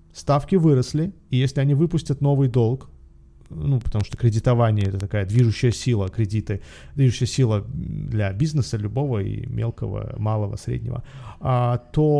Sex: male